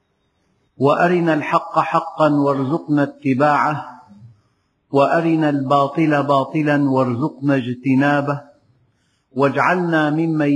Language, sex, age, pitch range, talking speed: Arabic, male, 50-69, 135-160 Hz, 70 wpm